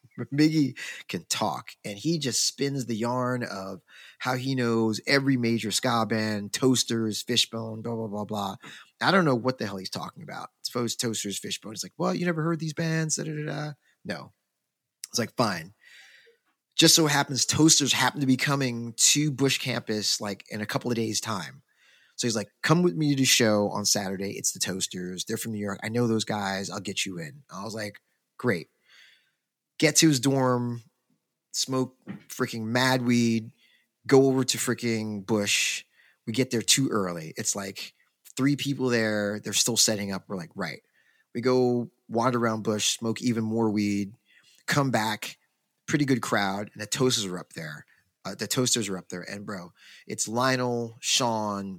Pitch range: 105-135 Hz